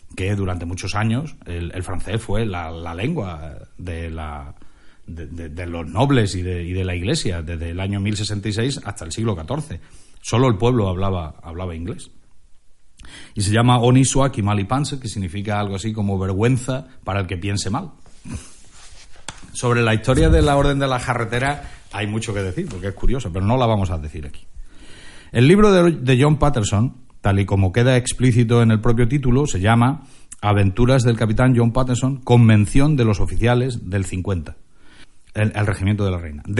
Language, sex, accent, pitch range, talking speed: Spanish, male, Spanish, 95-130 Hz, 185 wpm